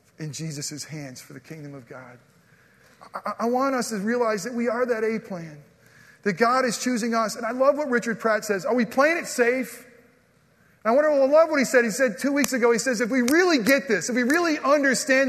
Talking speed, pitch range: 230 wpm, 175-260 Hz